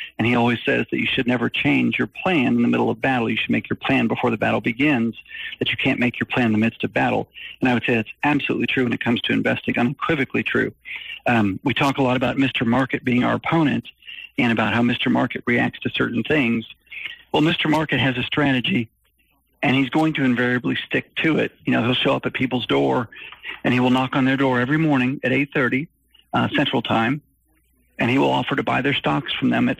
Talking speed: 235 wpm